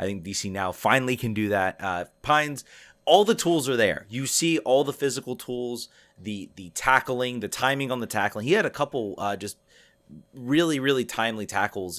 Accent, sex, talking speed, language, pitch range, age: American, male, 195 wpm, English, 95-125 Hz, 30-49